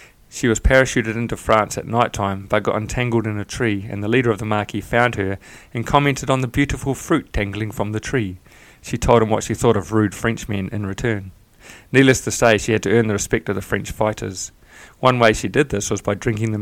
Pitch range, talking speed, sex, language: 100-120 Hz, 235 wpm, male, English